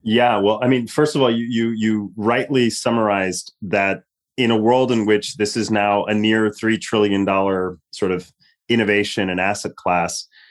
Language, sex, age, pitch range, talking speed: English, male, 30-49, 100-115 Hz, 175 wpm